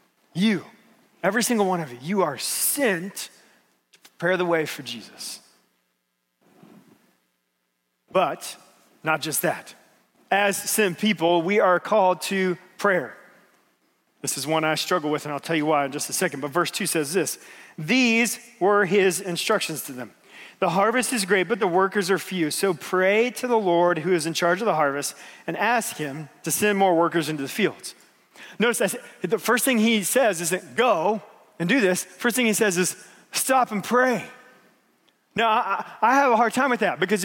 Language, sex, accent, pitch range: English, male, American, 160-220 Hz